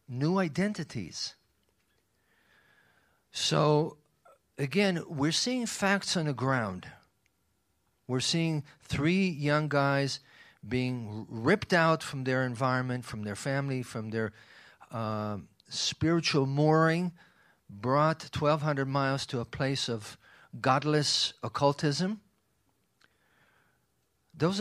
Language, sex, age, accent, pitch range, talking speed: English, male, 50-69, American, 115-155 Hz, 95 wpm